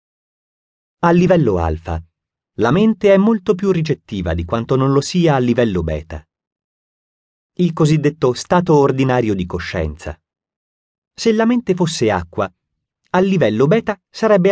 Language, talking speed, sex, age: Italian, 130 wpm, male, 30-49